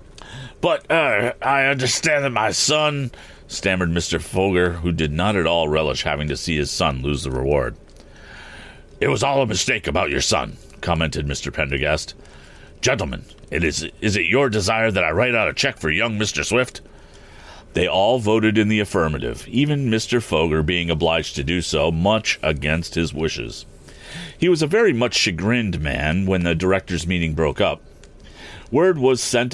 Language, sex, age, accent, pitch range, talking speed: English, male, 40-59, American, 80-115 Hz, 175 wpm